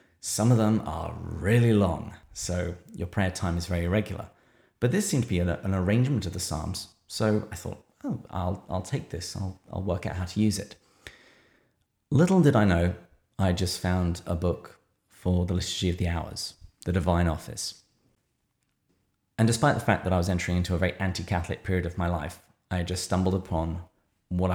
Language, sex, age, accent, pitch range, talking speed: English, male, 30-49, British, 85-100 Hz, 190 wpm